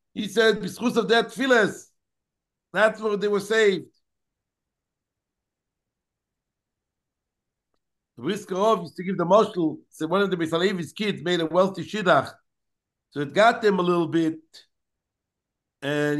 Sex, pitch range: male, 160-215 Hz